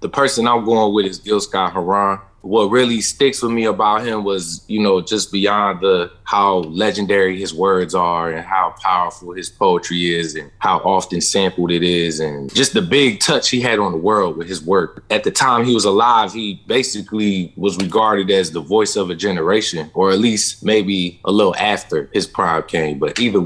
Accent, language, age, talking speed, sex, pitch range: American, English, 20-39, 205 wpm, male, 90-110 Hz